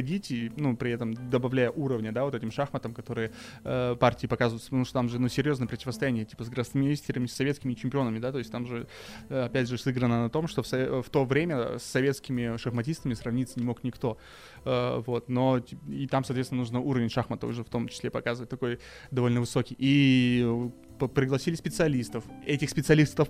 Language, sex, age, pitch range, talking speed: Russian, male, 20-39, 120-140 Hz, 185 wpm